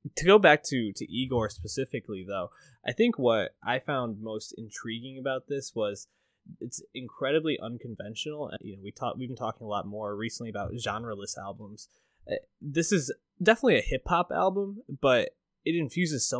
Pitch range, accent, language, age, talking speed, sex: 110-140 Hz, American, English, 20-39, 170 wpm, male